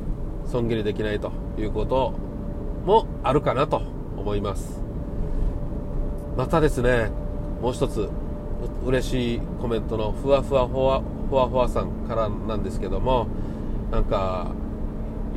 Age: 40-59